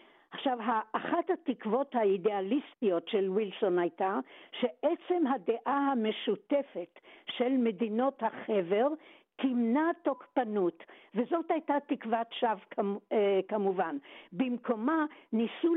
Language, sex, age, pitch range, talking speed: Hebrew, female, 60-79, 225-285 Hz, 85 wpm